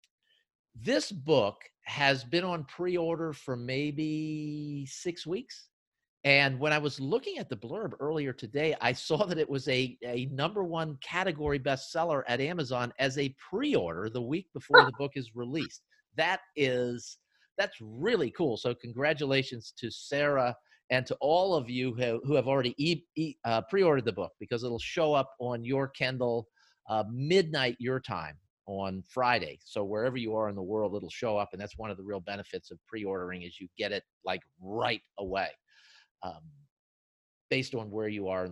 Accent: American